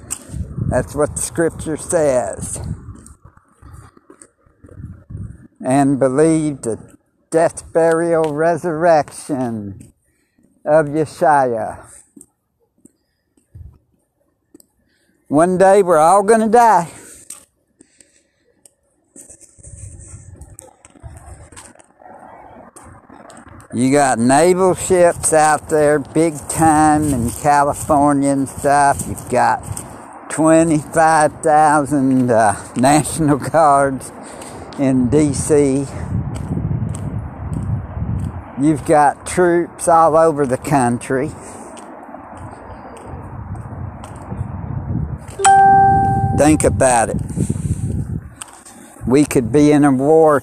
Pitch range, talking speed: 115-155 Hz, 65 wpm